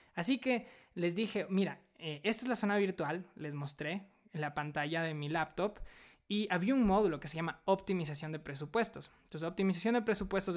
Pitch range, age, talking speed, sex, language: 160-200 Hz, 20-39, 185 wpm, male, Spanish